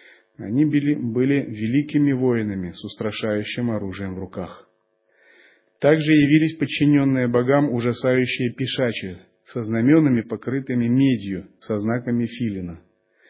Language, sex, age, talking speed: Russian, male, 30-49, 105 wpm